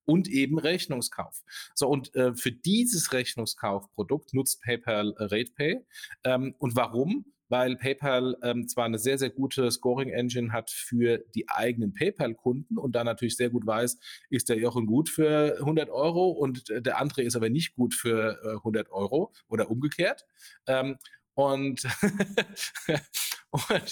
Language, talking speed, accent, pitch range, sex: German, 150 wpm, German, 115-140 Hz, male